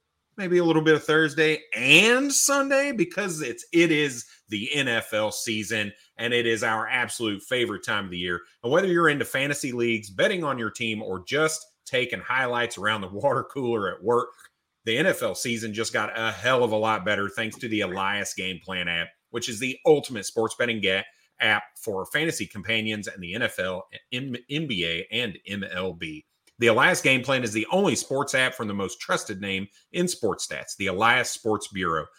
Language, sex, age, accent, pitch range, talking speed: English, male, 30-49, American, 105-145 Hz, 190 wpm